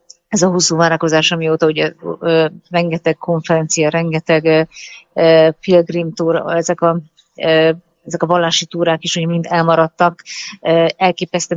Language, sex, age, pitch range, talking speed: Hungarian, female, 30-49, 165-175 Hz, 130 wpm